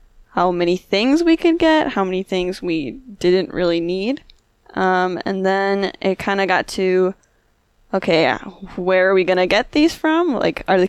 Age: 10-29